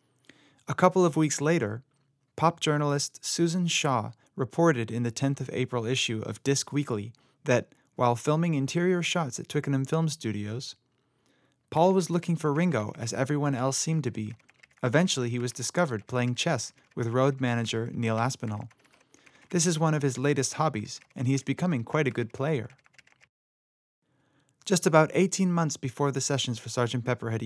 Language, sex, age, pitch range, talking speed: English, male, 30-49, 120-150 Hz, 165 wpm